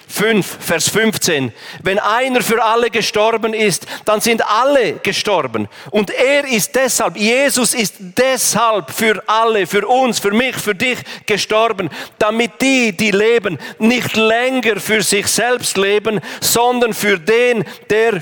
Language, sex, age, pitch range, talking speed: German, male, 40-59, 165-220 Hz, 140 wpm